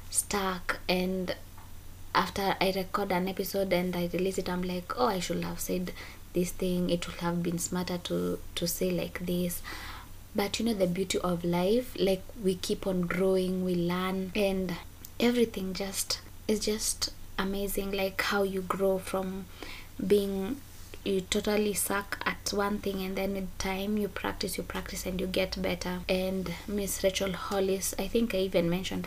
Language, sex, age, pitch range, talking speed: English, female, 20-39, 170-195 Hz, 175 wpm